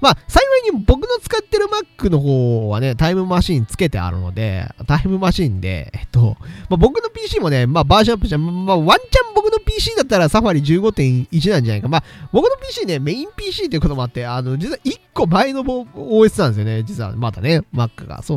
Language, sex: Japanese, male